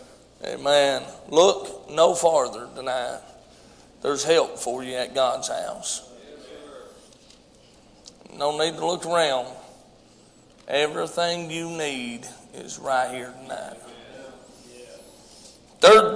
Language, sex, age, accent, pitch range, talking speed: English, male, 40-59, American, 155-215 Hz, 95 wpm